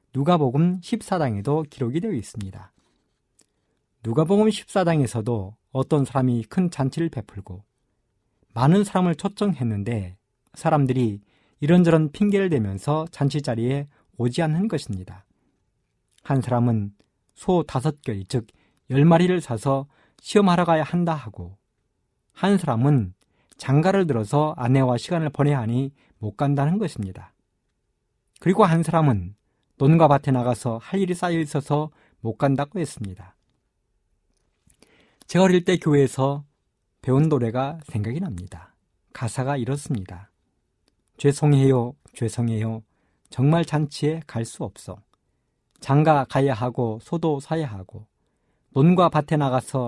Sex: male